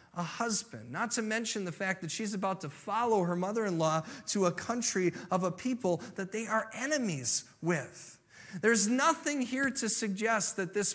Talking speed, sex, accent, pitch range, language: 175 wpm, male, American, 185-250 Hz, English